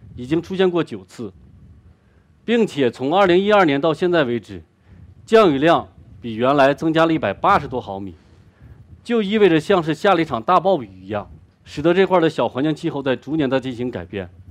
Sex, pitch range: male, 105-170 Hz